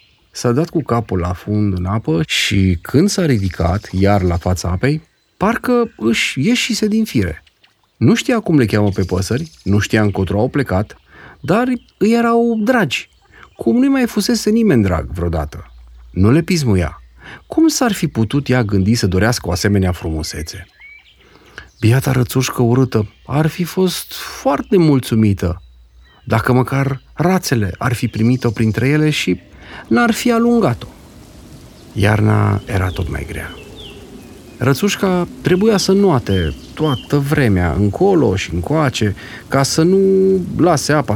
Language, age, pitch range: Romanian, 40-59, 100-165 Hz